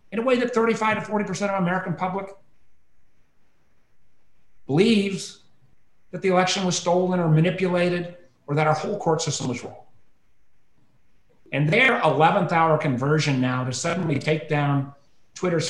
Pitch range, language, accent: 125-170 Hz, English, American